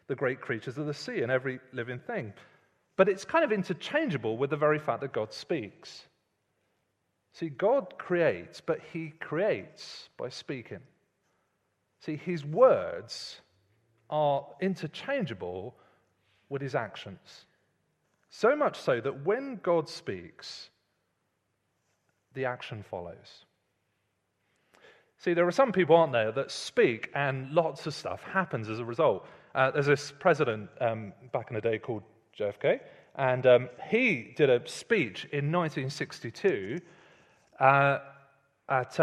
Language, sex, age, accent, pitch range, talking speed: English, male, 30-49, British, 110-165 Hz, 130 wpm